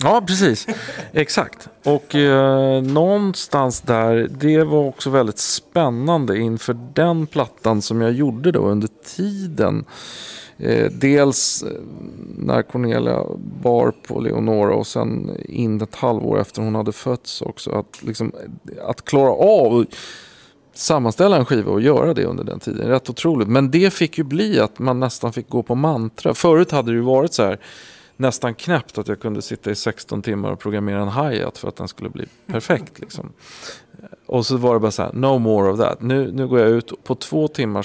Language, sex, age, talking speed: Swedish, male, 40-59, 180 wpm